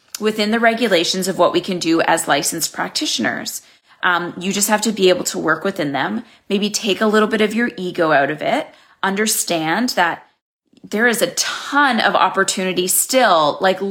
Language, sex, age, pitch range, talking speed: English, female, 30-49, 175-220 Hz, 185 wpm